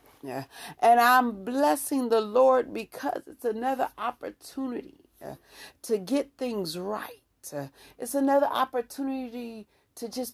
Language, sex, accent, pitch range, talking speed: English, female, American, 210-270 Hz, 105 wpm